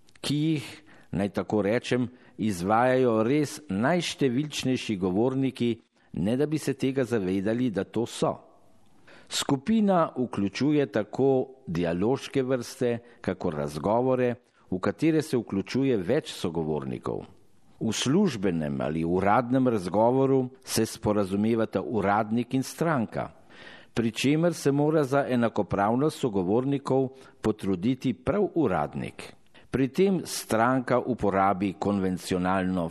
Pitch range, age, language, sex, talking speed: 100-130 Hz, 50-69, Italian, male, 100 wpm